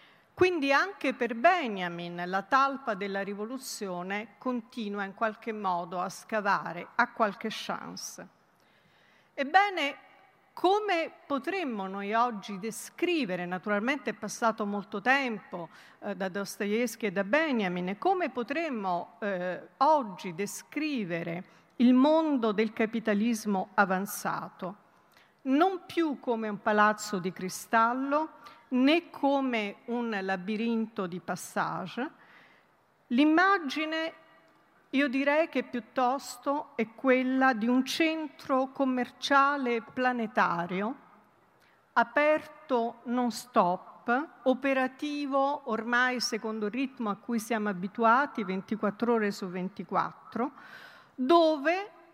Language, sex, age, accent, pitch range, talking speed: Italian, female, 50-69, native, 210-285 Hz, 100 wpm